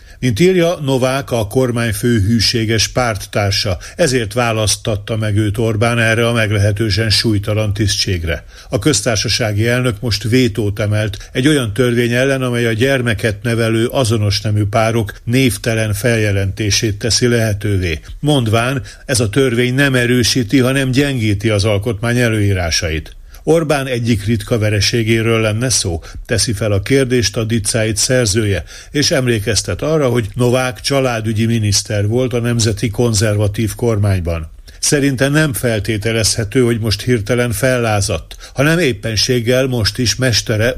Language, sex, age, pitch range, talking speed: Hungarian, male, 50-69, 105-125 Hz, 125 wpm